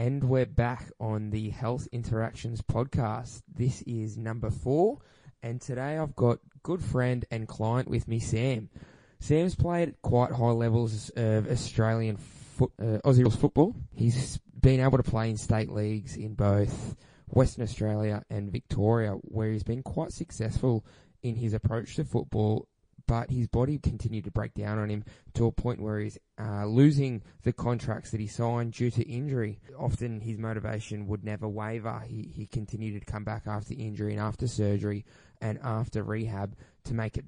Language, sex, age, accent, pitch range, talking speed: English, male, 20-39, Australian, 110-125 Hz, 165 wpm